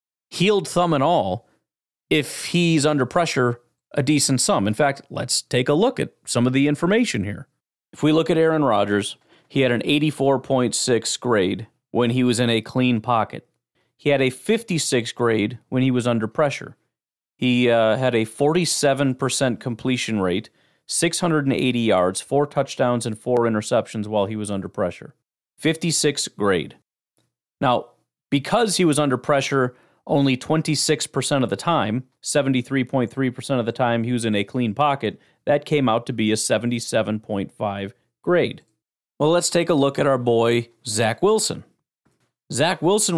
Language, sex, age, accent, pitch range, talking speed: English, male, 40-59, American, 120-150 Hz, 155 wpm